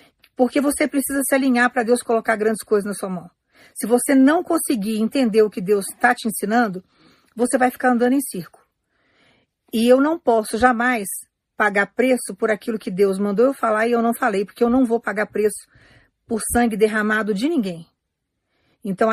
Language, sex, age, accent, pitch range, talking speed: Portuguese, female, 50-69, Brazilian, 210-255 Hz, 190 wpm